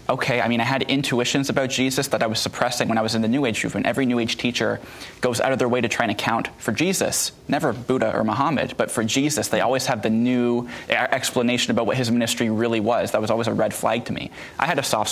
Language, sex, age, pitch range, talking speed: English, male, 20-39, 105-120 Hz, 260 wpm